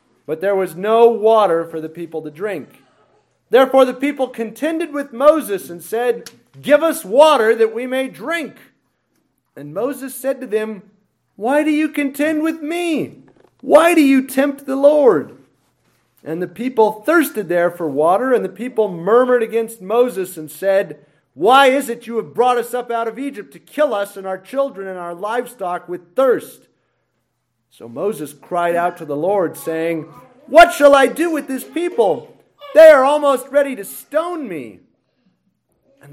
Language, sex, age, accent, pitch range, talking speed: English, male, 40-59, American, 175-265 Hz, 170 wpm